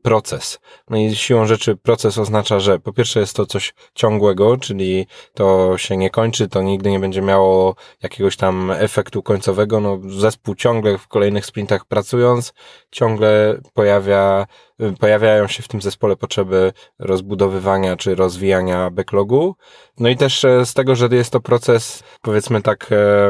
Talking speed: 150 wpm